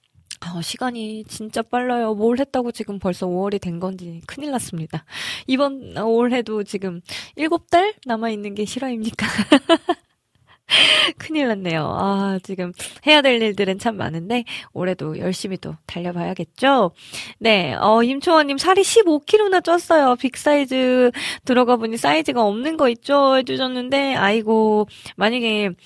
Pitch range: 180-250 Hz